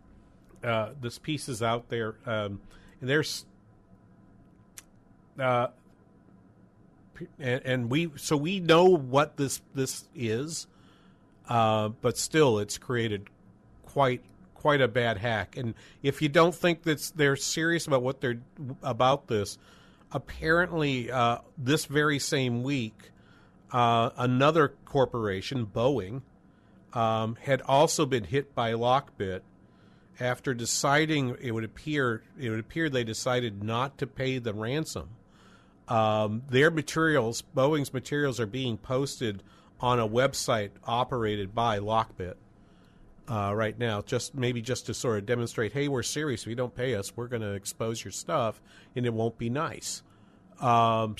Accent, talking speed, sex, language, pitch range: American, 140 wpm, male, English, 110-140 Hz